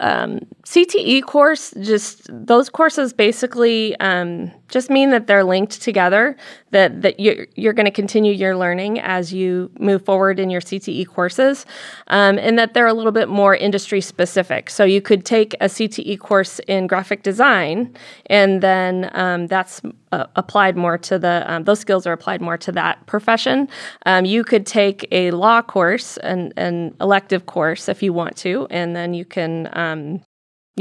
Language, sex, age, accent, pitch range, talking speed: English, female, 20-39, American, 180-215 Hz, 175 wpm